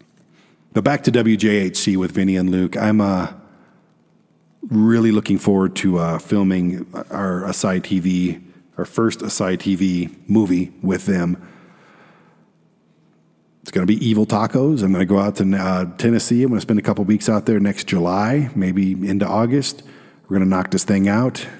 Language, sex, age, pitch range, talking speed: English, male, 50-69, 95-115 Hz, 170 wpm